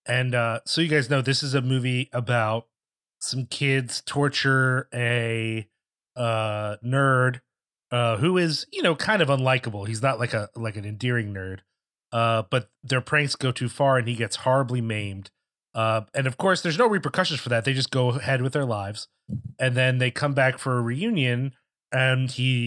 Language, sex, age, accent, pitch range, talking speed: English, male, 30-49, American, 120-150 Hz, 190 wpm